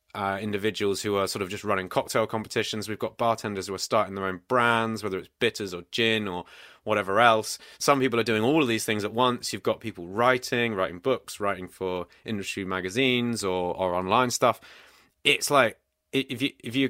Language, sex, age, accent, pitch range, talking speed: English, male, 30-49, British, 100-115 Hz, 200 wpm